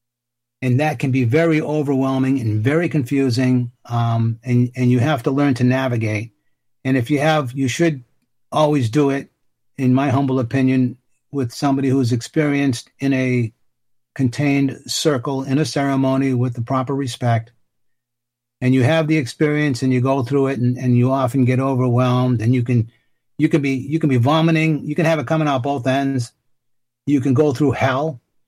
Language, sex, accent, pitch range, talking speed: English, male, American, 125-150 Hz, 180 wpm